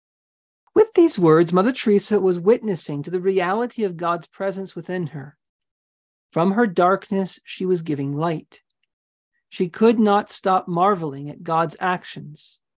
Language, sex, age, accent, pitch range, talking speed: English, male, 40-59, American, 165-205 Hz, 140 wpm